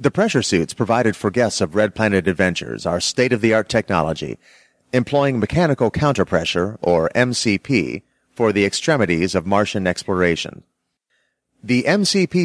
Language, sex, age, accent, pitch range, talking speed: English, male, 30-49, American, 100-140 Hz, 125 wpm